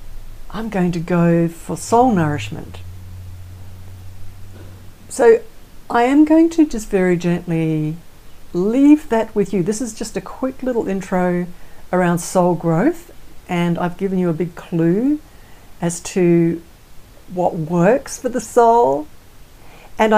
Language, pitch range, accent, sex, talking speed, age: English, 160-205 Hz, Australian, female, 130 wpm, 60-79